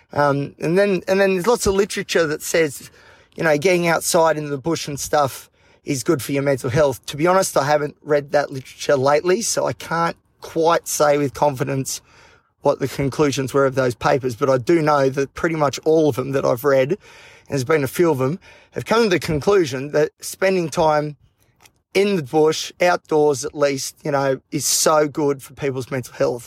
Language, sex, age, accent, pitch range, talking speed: English, male, 30-49, Australian, 135-160 Hz, 210 wpm